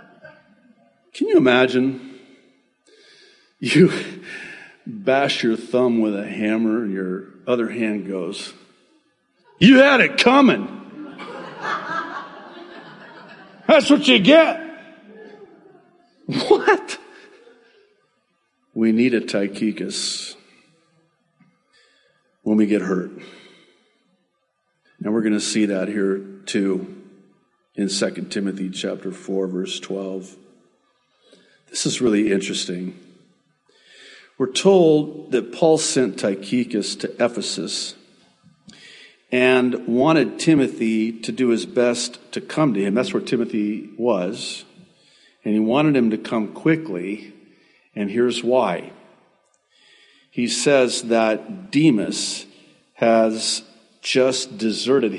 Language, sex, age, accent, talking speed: English, male, 50-69, American, 100 wpm